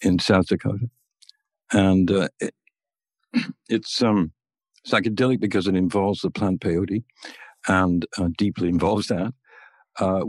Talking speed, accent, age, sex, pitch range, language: 115 wpm, American, 60-79, male, 95-130 Hz, English